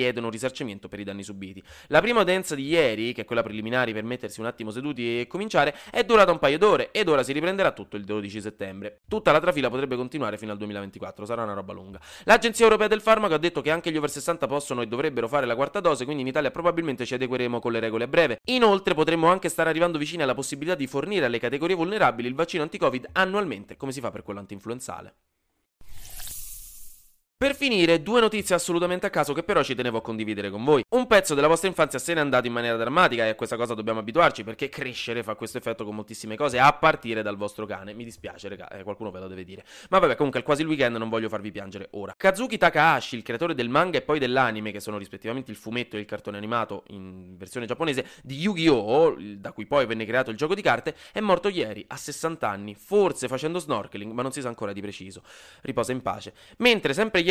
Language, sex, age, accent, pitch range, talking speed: Italian, male, 20-39, native, 110-165 Hz, 225 wpm